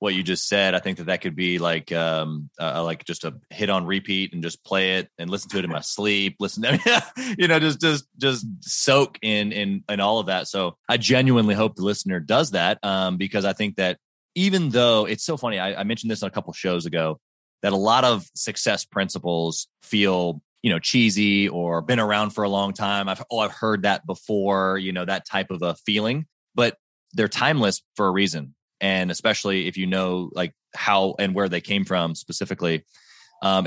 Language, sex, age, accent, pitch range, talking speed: English, male, 20-39, American, 90-115 Hz, 215 wpm